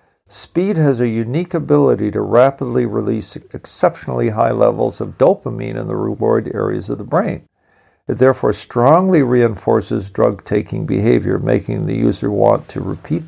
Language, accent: English, American